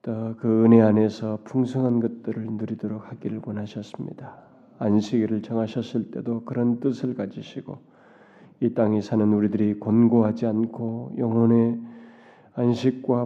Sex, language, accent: male, Korean, native